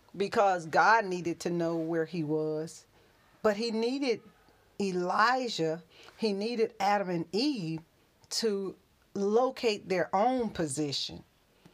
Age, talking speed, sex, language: 40-59, 110 wpm, female, English